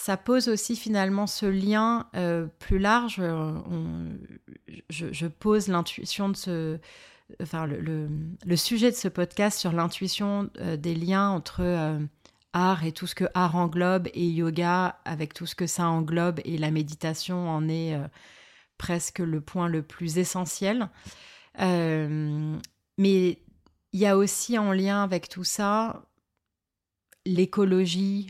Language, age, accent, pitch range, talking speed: French, 30-49, French, 165-195 Hz, 140 wpm